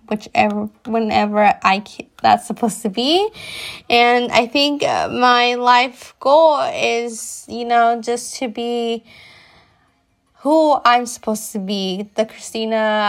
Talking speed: 125 wpm